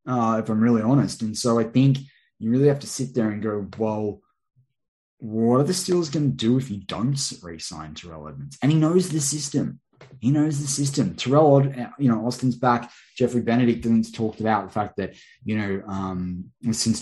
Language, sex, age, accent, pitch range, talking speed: English, male, 10-29, Australian, 95-130 Hz, 200 wpm